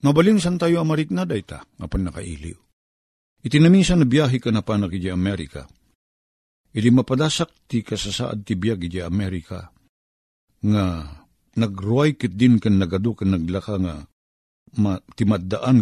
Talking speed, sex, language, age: 130 wpm, male, Filipino, 50-69